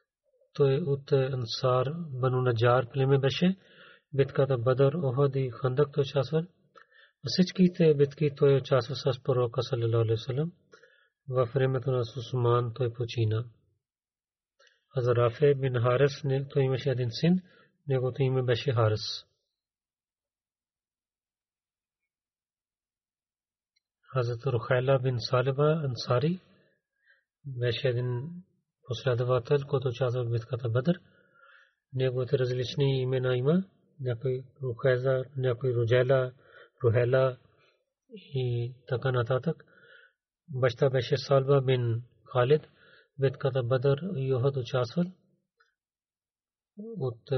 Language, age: Bulgarian, 40-59